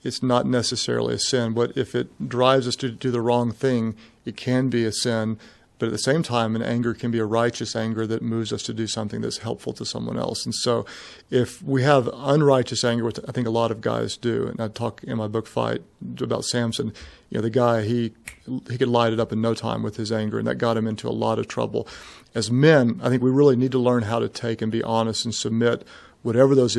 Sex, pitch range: male, 110-125 Hz